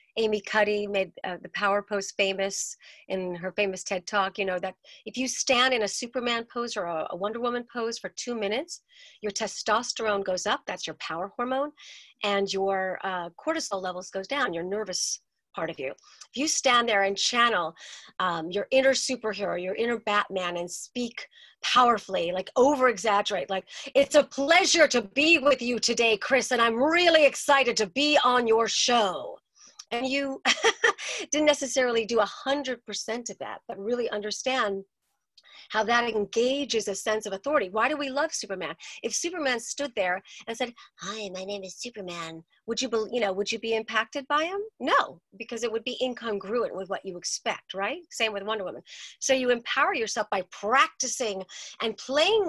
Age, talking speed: 40-59, 180 wpm